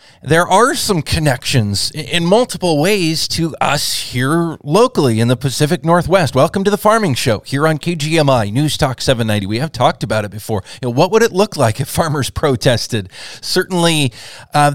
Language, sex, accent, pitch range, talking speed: English, male, American, 125-160 Hz, 170 wpm